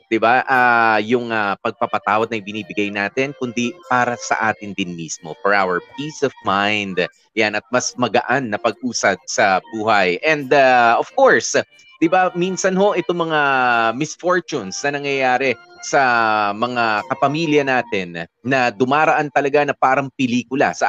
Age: 30-49